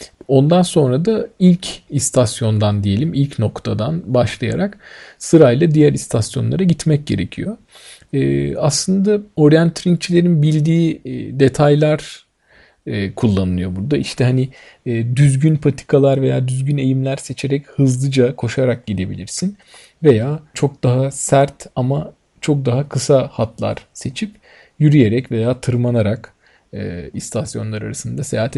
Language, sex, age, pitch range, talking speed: Turkish, male, 40-59, 120-155 Hz, 110 wpm